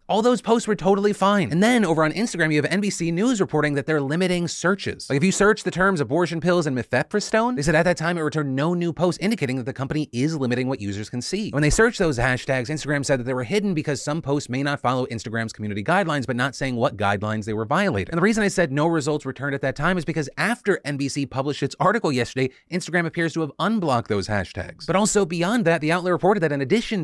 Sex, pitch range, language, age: male, 130-175 Hz, English, 30-49